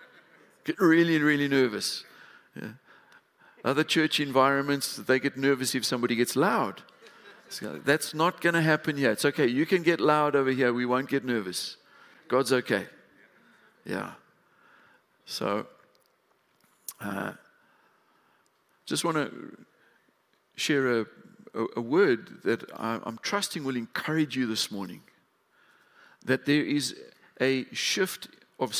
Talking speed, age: 130 wpm, 50-69